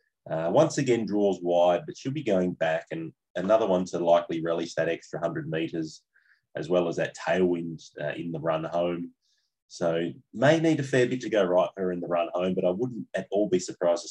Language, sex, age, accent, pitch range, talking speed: English, male, 30-49, Australian, 85-100 Hz, 225 wpm